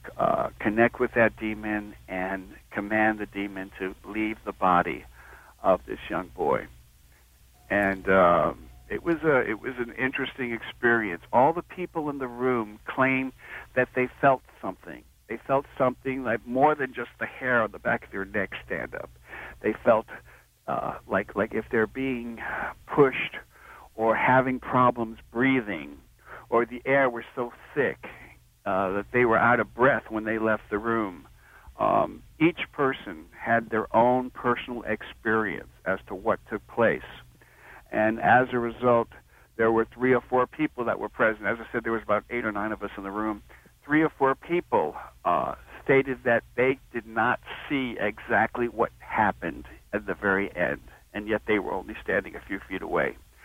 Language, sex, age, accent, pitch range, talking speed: English, male, 60-79, American, 105-125 Hz, 175 wpm